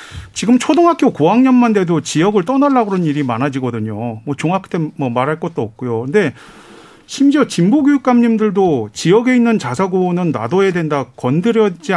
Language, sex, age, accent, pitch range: Korean, male, 40-59, native, 150-230 Hz